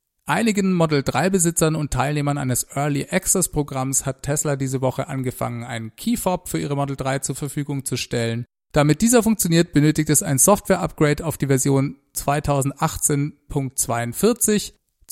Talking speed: 135 wpm